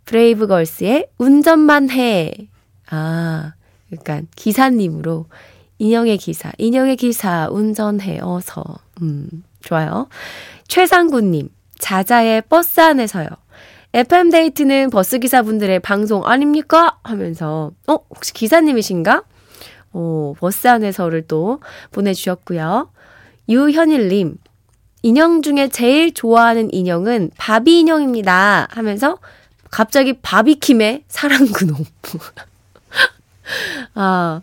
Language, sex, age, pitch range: Korean, female, 20-39, 170-265 Hz